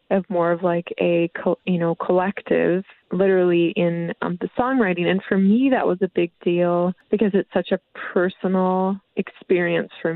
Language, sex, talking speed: English, female, 165 wpm